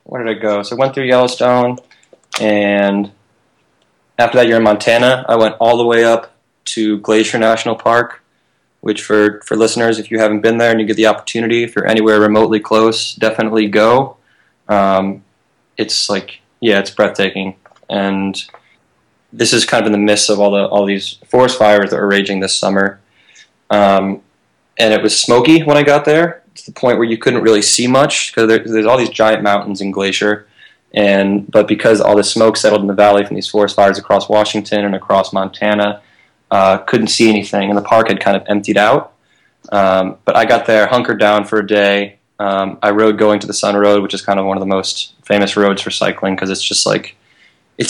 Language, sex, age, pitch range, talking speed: English, male, 20-39, 100-115 Hz, 205 wpm